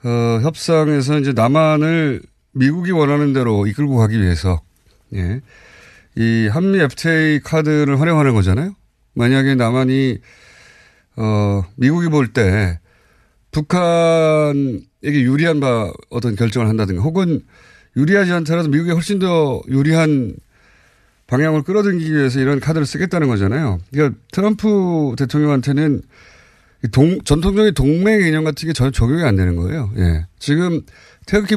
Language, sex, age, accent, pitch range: Korean, male, 30-49, native, 110-165 Hz